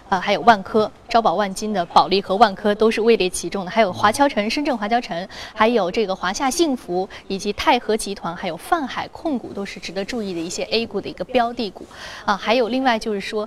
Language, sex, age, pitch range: Chinese, female, 20-39, 195-250 Hz